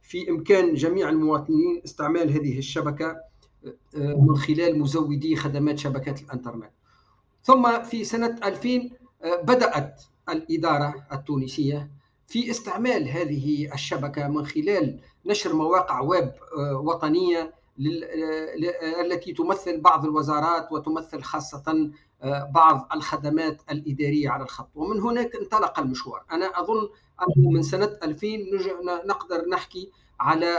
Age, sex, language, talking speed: 50-69, male, Arabic, 110 wpm